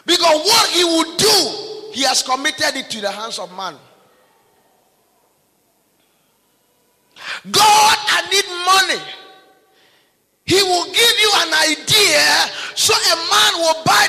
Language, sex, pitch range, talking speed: English, male, 285-390 Hz, 125 wpm